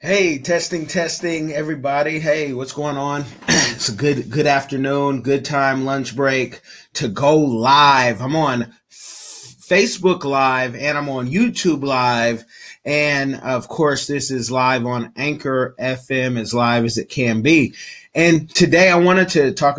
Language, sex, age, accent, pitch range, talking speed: English, male, 30-49, American, 120-150 Hz, 155 wpm